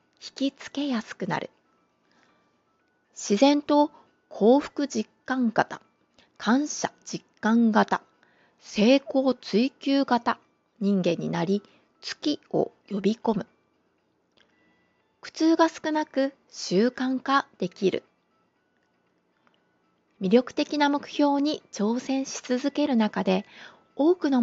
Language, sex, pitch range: Japanese, female, 205-290 Hz